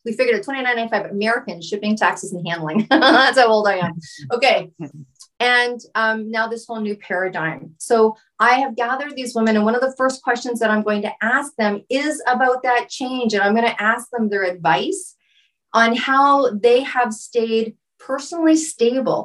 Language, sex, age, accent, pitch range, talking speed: English, female, 40-59, American, 190-245 Hz, 185 wpm